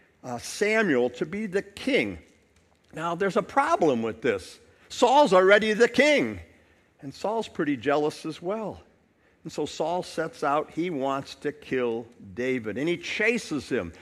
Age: 50-69